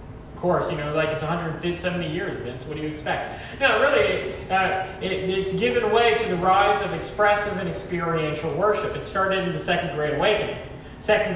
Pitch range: 170-210 Hz